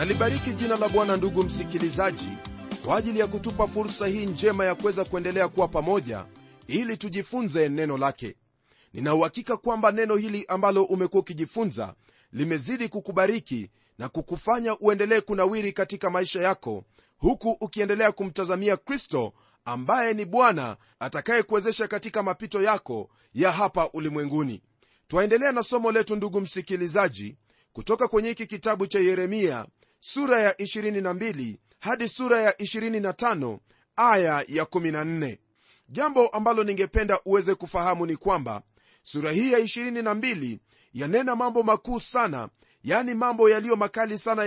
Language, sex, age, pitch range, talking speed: Swahili, male, 40-59, 175-225 Hz, 130 wpm